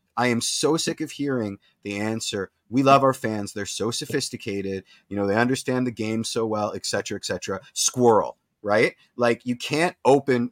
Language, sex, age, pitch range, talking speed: English, male, 30-49, 110-150 Hz, 190 wpm